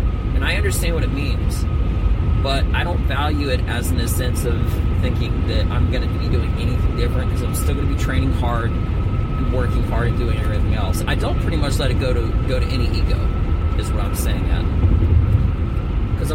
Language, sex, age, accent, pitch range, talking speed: English, male, 30-49, American, 85-95 Hz, 215 wpm